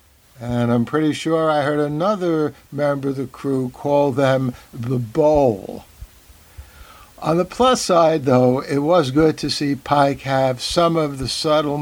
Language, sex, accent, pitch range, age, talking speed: English, male, American, 120-160 Hz, 60-79, 155 wpm